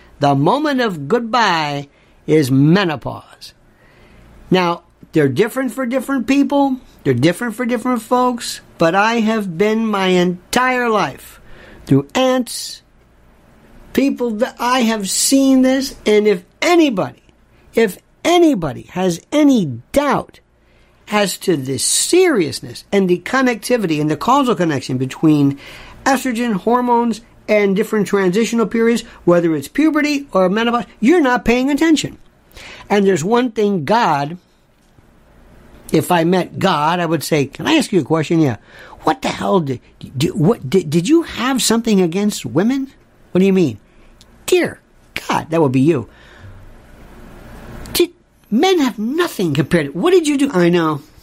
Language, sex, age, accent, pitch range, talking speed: English, male, 60-79, American, 165-260 Hz, 140 wpm